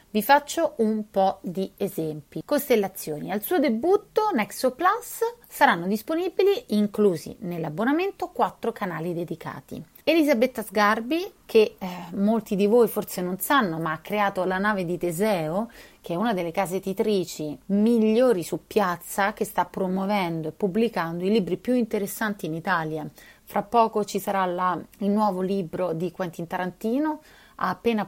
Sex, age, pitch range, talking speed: female, 30-49, 180-240 Hz, 145 wpm